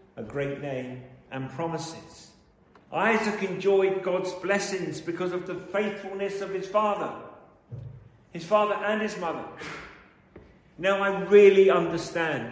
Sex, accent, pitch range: male, British, 135-200 Hz